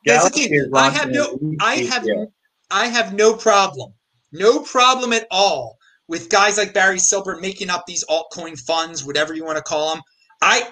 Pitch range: 175-240 Hz